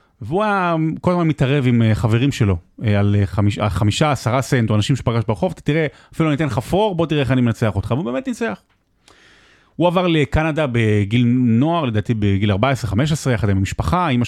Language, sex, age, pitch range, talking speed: Hebrew, male, 30-49, 110-155 Hz, 185 wpm